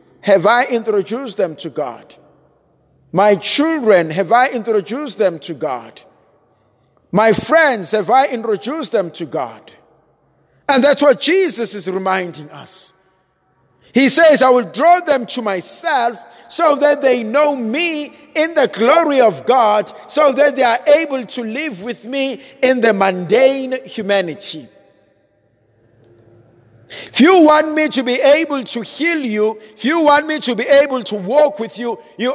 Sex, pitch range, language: male, 170-260 Hz, English